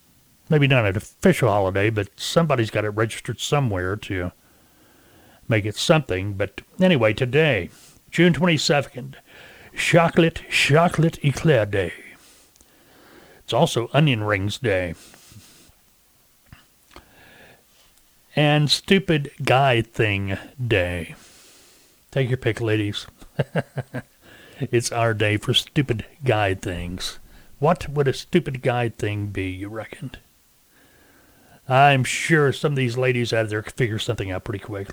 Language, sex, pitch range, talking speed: English, male, 105-145 Hz, 115 wpm